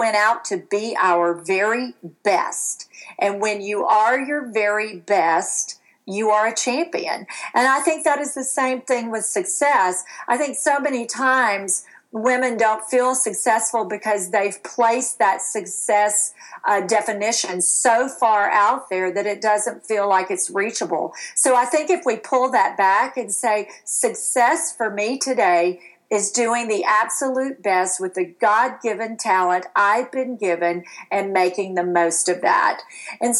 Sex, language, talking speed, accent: female, English, 160 wpm, American